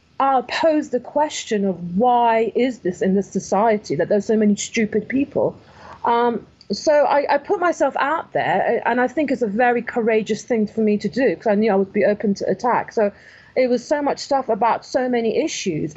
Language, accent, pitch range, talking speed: English, British, 215-265 Hz, 215 wpm